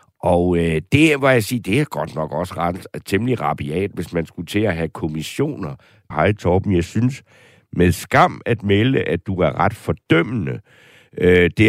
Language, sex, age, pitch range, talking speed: Danish, male, 60-79, 85-125 Hz, 185 wpm